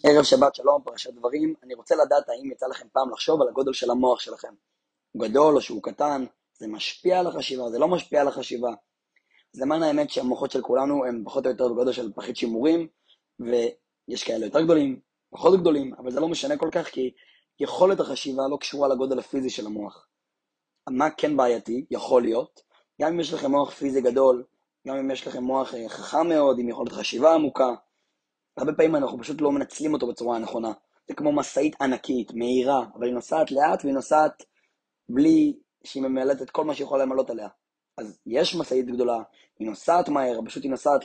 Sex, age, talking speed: male, 20-39, 190 wpm